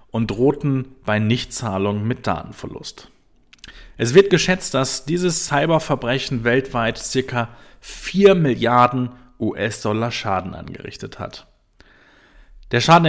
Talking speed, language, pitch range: 100 wpm, German, 115-145 Hz